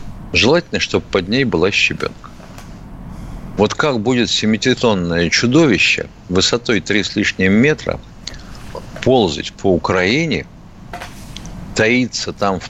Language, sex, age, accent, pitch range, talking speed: Russian, male, 50-69, native, 85-125 Hz, 105 wpm